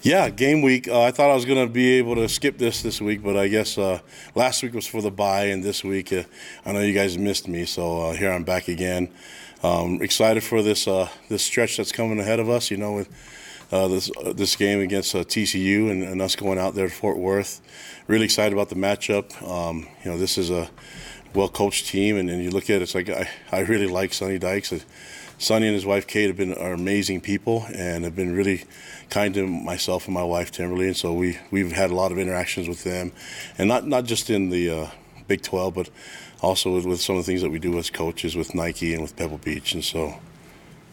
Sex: male